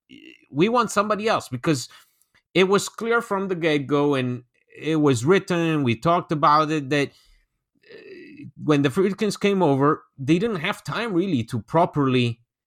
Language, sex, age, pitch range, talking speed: English, male, 30-49, 130-175 Hz, 155 wpm